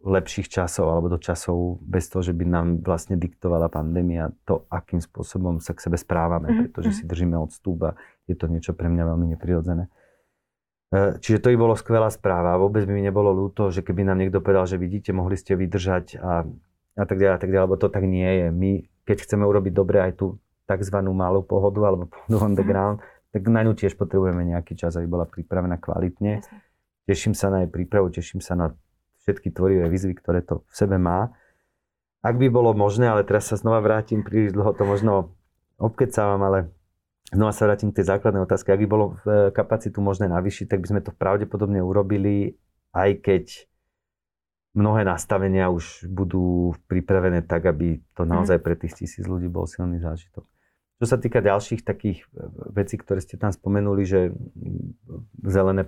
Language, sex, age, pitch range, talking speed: Slovak, male, 30-49, 90-100 Hz, 180 wpm